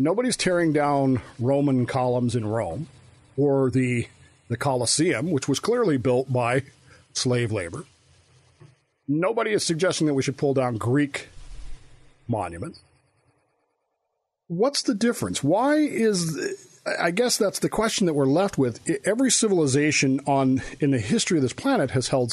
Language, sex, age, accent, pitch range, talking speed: English, male, 50-69, American, 130-175 Hz, 145 wpm